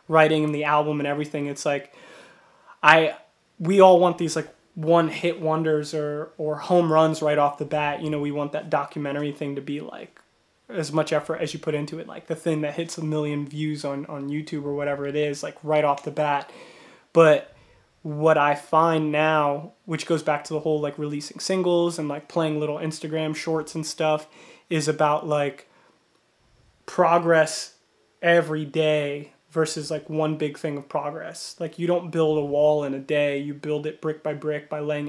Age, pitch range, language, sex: 20-39, 150-165 Hz, English, male